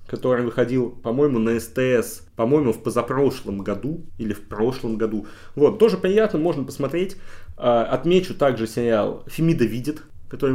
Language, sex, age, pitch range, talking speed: Russian, male, 30-49, 105-130 Hz, 135 wpm